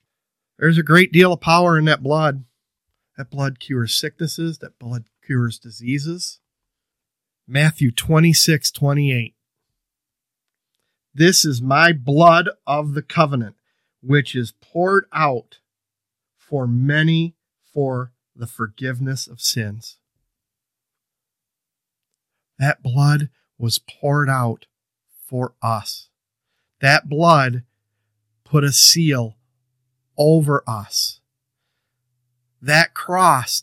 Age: 40-59